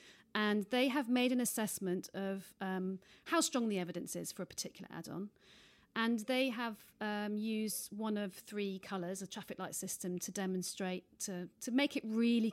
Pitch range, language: 190-250 Hz, English